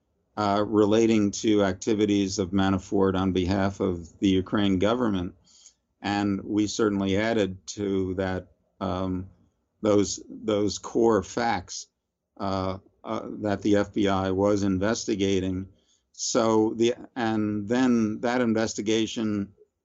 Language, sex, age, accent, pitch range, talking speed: English, male, 50-69, American, 95-105 Hz, 110 wpm